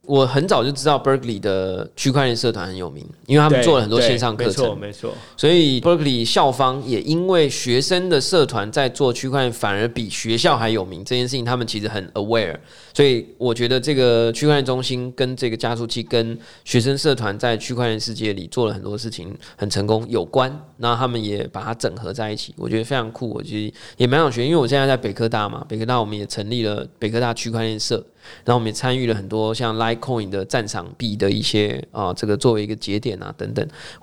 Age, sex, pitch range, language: 20-39, male, 105-135 Hz, Chinese